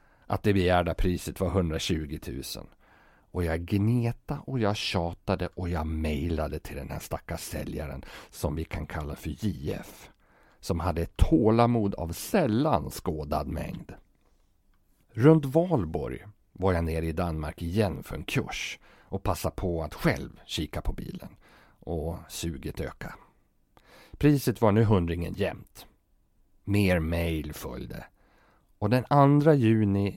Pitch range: 85-115 Hz